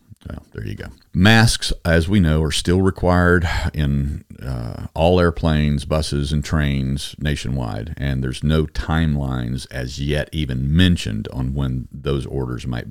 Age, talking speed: 50-69, 150 wpm